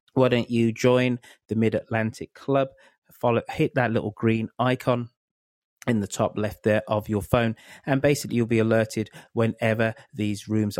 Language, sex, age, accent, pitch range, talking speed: English, male, 30-49, British, 105-125 Hz, 160 wpm